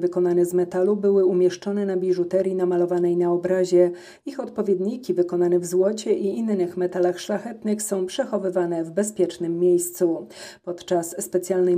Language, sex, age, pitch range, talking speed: Polish, female, 40-59, 175-200 Hz, 130 wpm